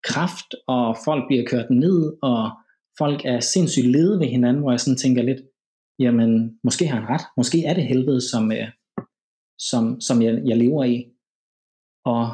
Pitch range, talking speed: 115-145 Hz, 170 wpm